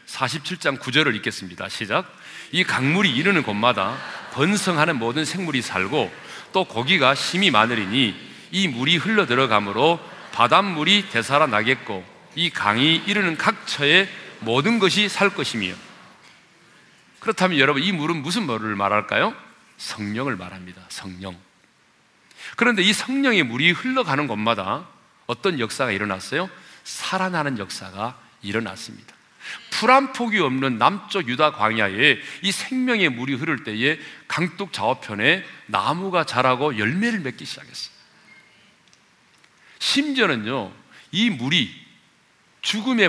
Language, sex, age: Korean, male, 40-59